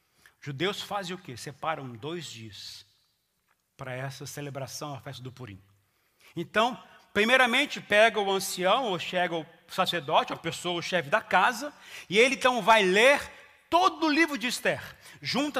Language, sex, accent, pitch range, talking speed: Portuguese, male, Brazilian, 185-270 Hz, 160 wpm